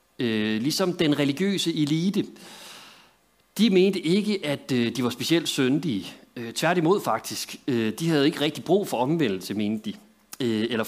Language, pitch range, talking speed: Danish, 125-175 Hz, 130 wpm